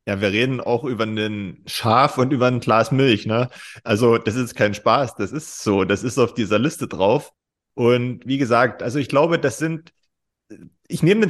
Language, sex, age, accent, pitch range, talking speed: German, male, 30-49, German, 120-145 Hz, 200 wpm